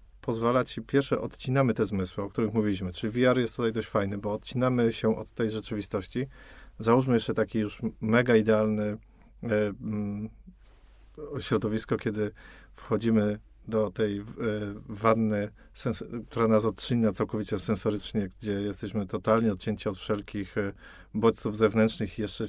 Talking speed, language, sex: 140 wpm, Polish, male